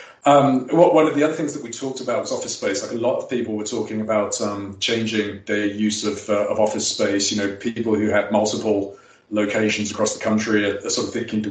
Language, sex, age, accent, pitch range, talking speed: English, male, 40-59, British, 105-120 Hz, 245 wpm